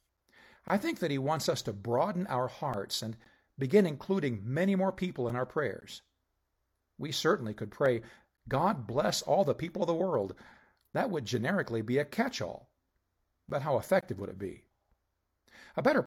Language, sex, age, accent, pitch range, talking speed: English, male, 50-69, American, 120-180 Hz, 170 wpm